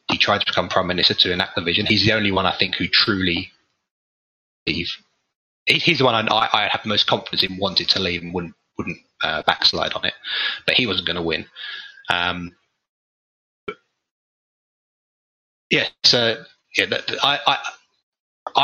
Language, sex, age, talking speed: English, male, 30-49, 165 wpm